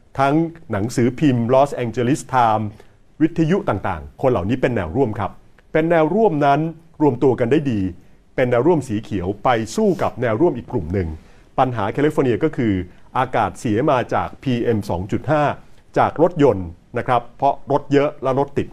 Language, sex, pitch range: Thai, male, 105-150 Hz